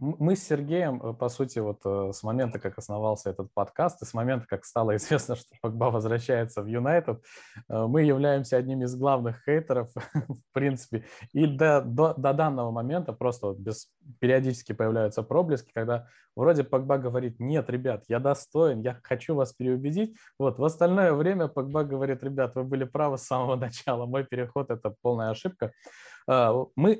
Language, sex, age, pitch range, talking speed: Russian, male, 20-39, 110-140 Hz, 165 wpm